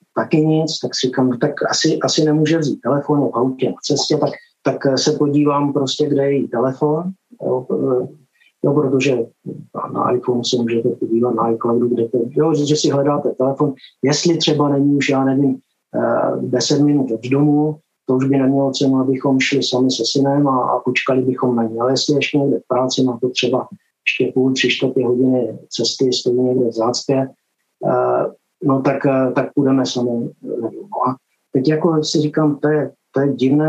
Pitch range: 130-150 Hz